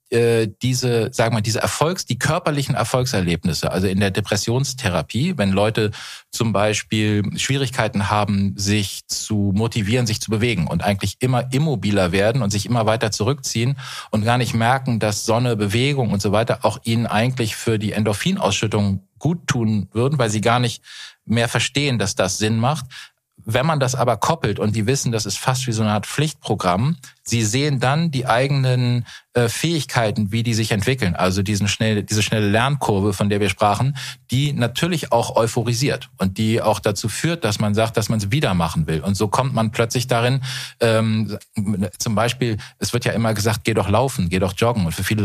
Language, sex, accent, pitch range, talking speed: German, male, German, 105-125 Hz, 185 wpm